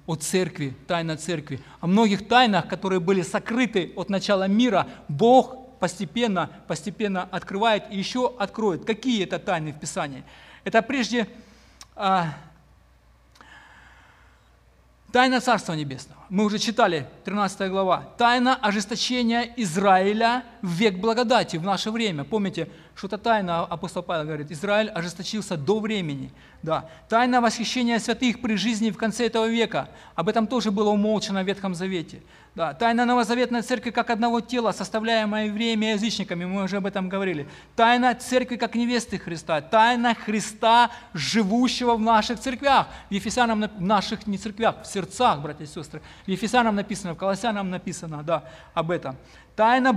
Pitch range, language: 190-235 Hz, Ukrainian